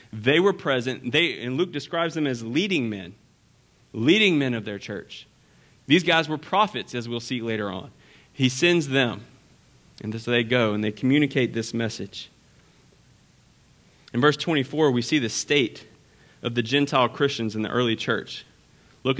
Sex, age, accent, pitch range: male, 30-49, American, 115-145 Hz